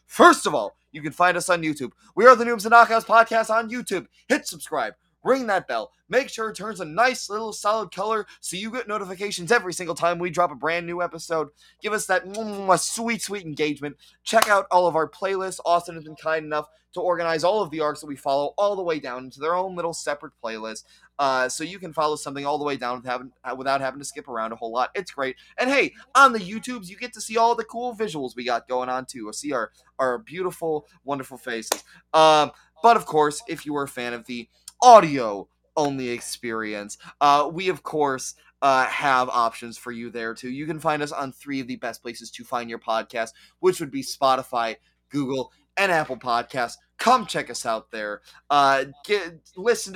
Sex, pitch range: male, 130-185 Hz